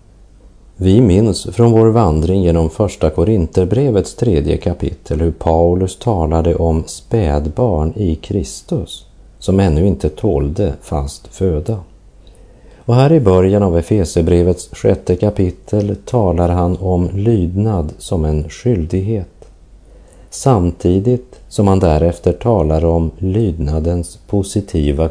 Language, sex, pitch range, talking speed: Portuguese, male, 80-105 Hz, 110 wpm